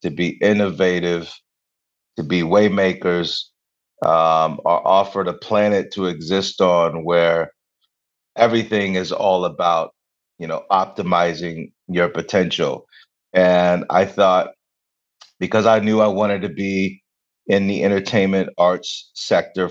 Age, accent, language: 30-49, American, English